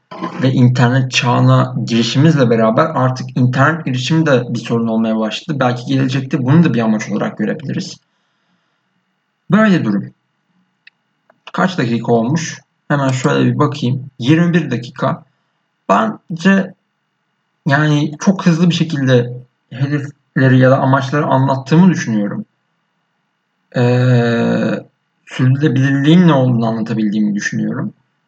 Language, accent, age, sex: Turkish, native, 50-69, male